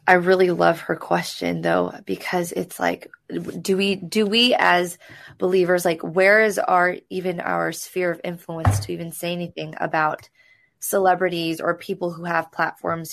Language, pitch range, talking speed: English, 175-210 Hz, 160 wpm